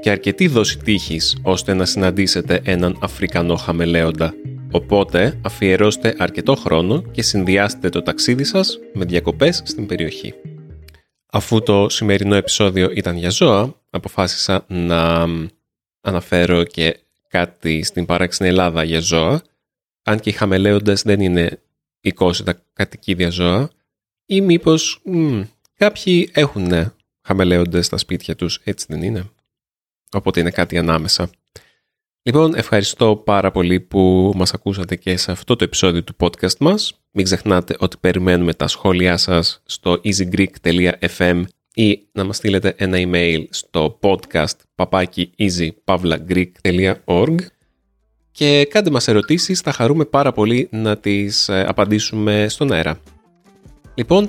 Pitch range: 85-110 Hz